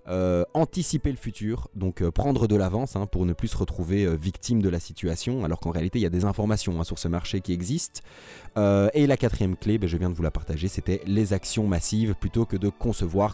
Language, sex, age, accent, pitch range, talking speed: French, male, 20-39, French, 95-130 Hz, 245 wpm